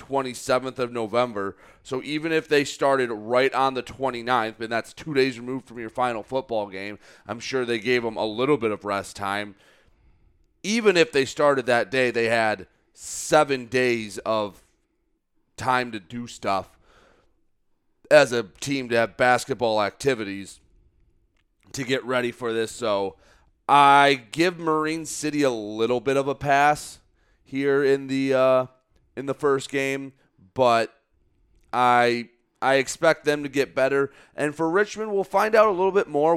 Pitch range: 115-145 Hz